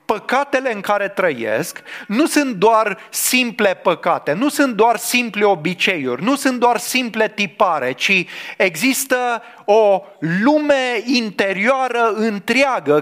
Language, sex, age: English, male, 30-49